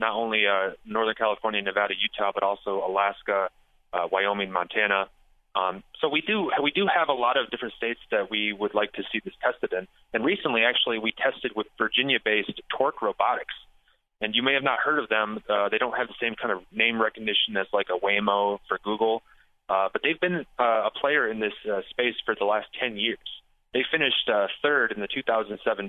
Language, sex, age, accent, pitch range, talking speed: English, male, 20-39, American, 100-110 Hz, 210 wpm